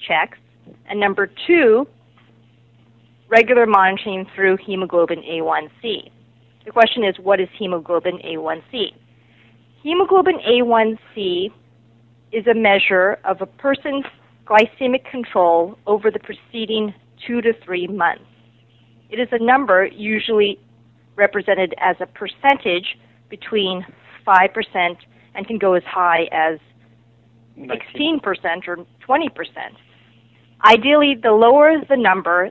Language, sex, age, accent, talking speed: English, female, 40-59, American, 105 wpm